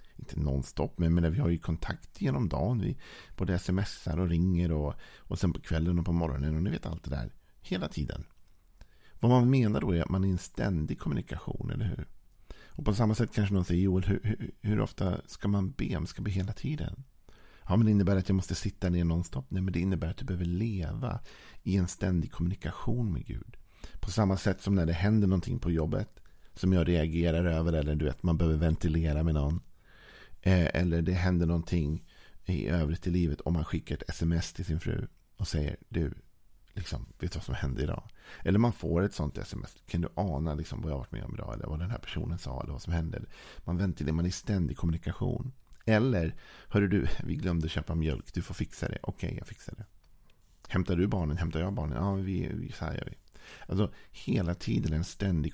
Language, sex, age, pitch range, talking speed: Swedish, male, 50-69, 80-100 Hz, 220 wpm